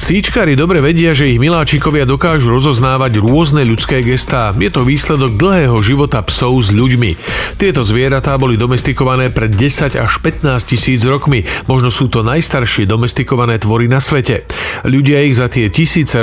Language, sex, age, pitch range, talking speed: Slovak, male, 40-59, 120-145 Hz, 155 wpm